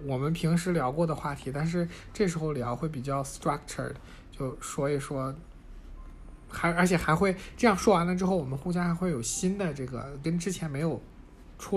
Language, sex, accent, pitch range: Chinese, male, native, 125-170 Hz